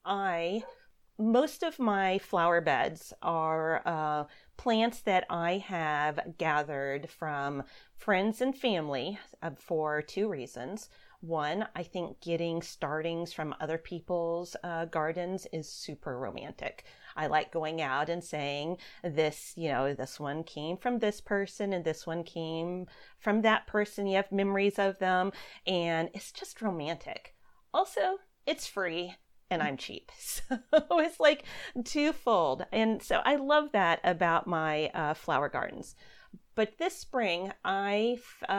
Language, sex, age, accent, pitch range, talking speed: English, female, 40-59, American, 160-210 Hz, 140 wpm